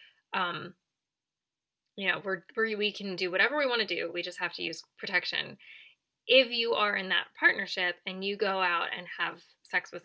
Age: 10-29